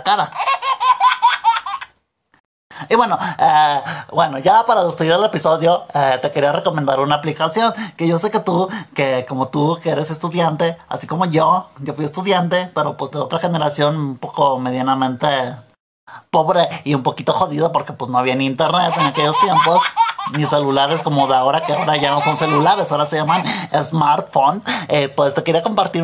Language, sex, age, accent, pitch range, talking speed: Spanish, male, 30-49, Mexican, 150-185 Hz, 175 wpm